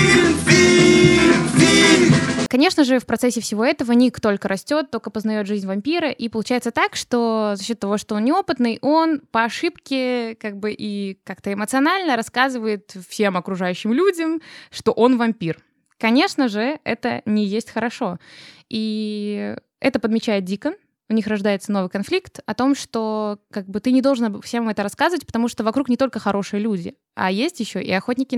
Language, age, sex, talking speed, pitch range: Russian, 20-39, female, 155 wpm, 195-250 Hz